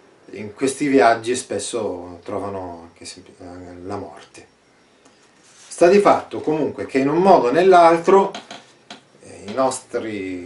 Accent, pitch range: native, 105-160 Hz